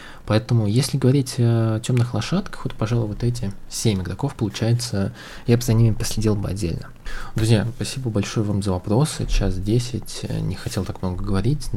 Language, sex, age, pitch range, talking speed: Russian, male, 20-39, 95-120 Hz, 170 wpm